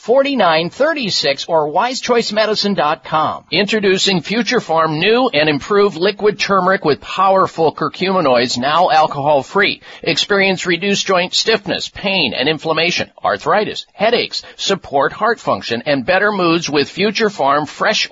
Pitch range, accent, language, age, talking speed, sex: 165-205 Hz, American, English, 50-69, 115 wpm, male